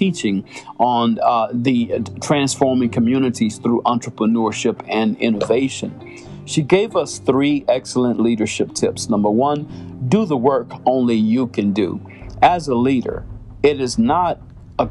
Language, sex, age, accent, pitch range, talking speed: English, male, 50-69, American, 115-135 Hz, 135 wpm